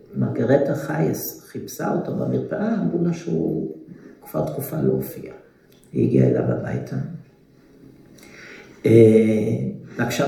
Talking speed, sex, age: 95 wpm, male, 50-69